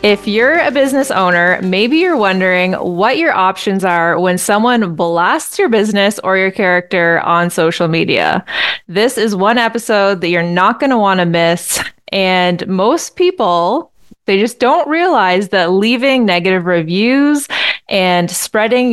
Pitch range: 175-225 Hz